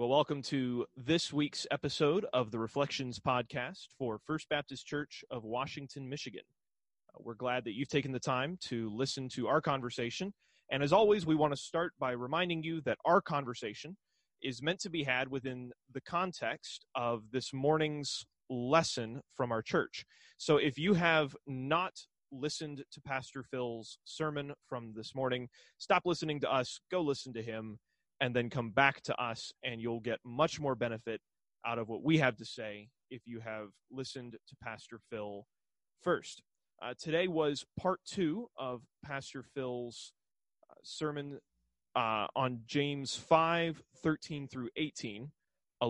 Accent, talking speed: American, 160 wpm